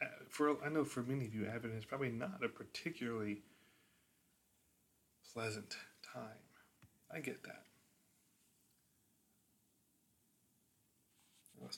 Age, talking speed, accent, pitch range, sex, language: 20-39, 100 wpm, American, 110-125 Hz, male, English